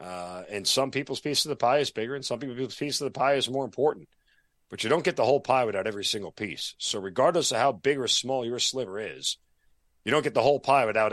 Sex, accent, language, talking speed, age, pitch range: male, American, English, 260 wpm, 40-59, 90-115 Hz